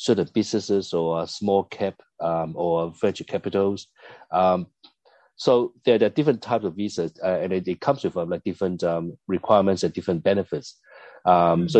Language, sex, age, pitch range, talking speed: English, male, 30-49, 85-105 Hz, 175 wpm